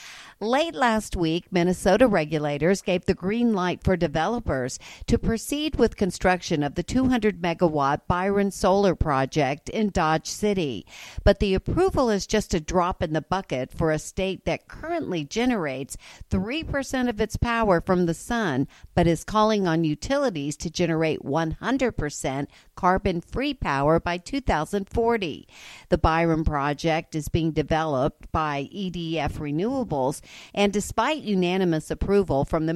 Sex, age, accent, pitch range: female, 60-79, American, 160-210 Hz